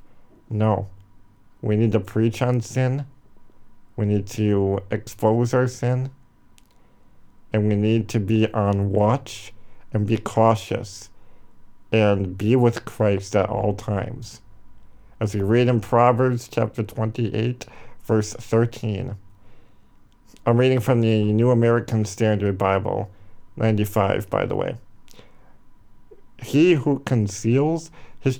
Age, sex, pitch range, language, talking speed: 50-69, male, 100-120 Hz, English, 115 wpm